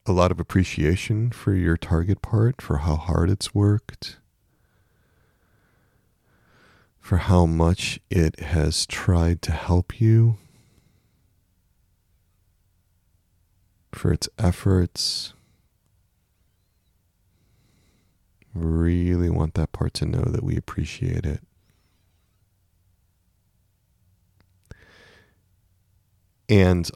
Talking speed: 80 wpm